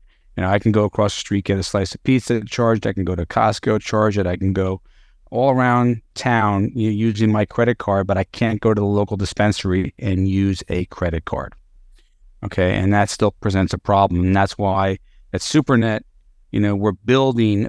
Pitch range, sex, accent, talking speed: 95-120 Hz, male, American, 210 wpm